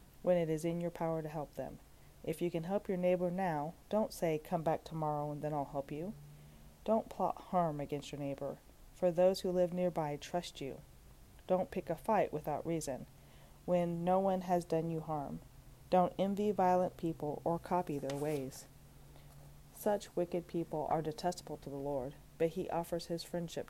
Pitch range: 140-170 Hz